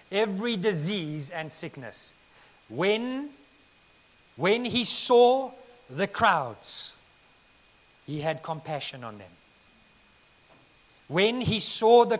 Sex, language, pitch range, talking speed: male, English, 150-195 Hz, 95 wpm